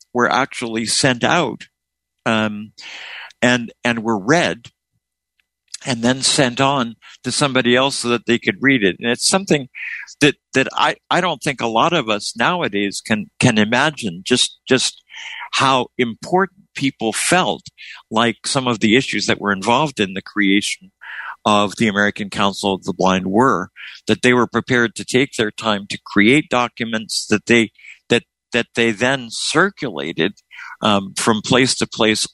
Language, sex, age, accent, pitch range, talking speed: English, male, 60-79, American, 100-125 Hz, 160 wpm